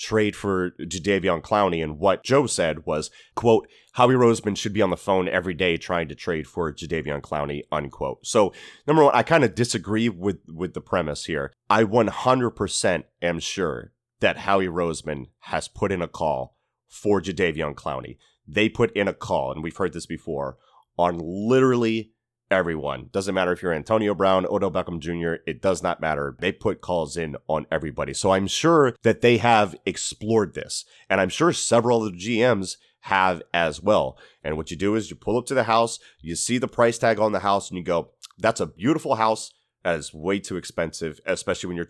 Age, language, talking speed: 30-49, English, 195 wpm